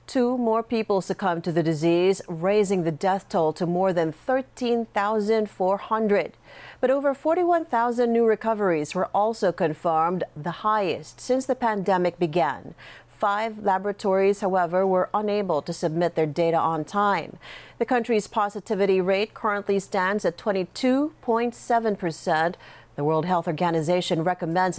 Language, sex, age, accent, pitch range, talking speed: English, female, 40-59, American, 175-220 Hz, 130 wpm